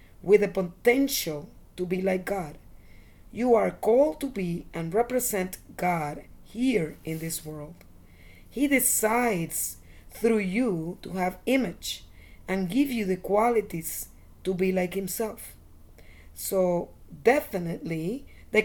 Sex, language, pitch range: female, English, 165-220 Hz